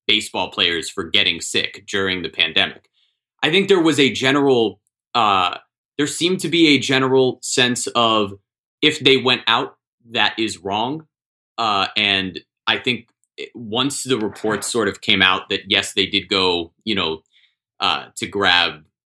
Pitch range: 105-135 Hz